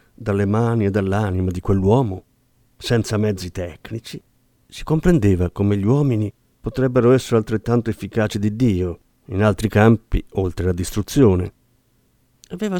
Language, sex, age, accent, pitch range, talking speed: Italian, male, 50-69, native, 100-125 Hz, 125 wpm